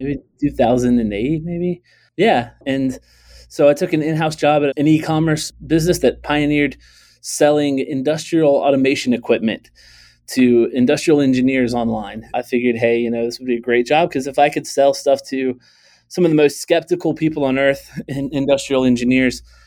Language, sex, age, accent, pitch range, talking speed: English, male, 20-39, American, 115-145 Hz, 160 wpm